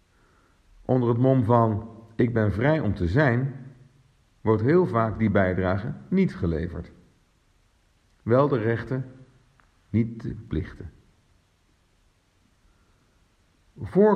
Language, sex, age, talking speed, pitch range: Dutch, male, 50-69, 100 wpm, 90-120 Hz